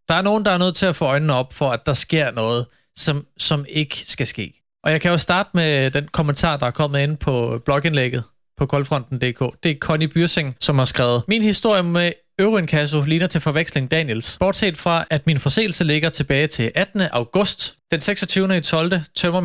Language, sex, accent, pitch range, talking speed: Danish, male, native, 140-180 Hz, 205 wpm